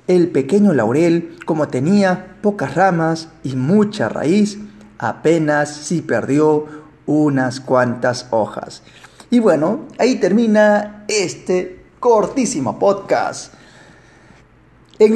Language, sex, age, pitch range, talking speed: Spanish, male, 40-59, 145-200 Hz, 95 wpm